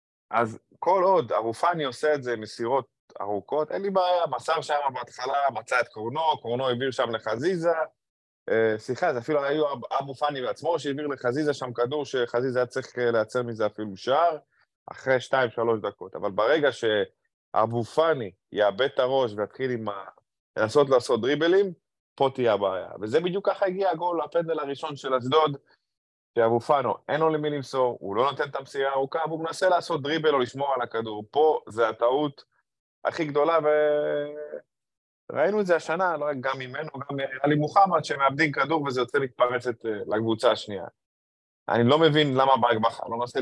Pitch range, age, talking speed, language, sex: 115-155 Hz, 20-39, 145 wpm, Hebrew, male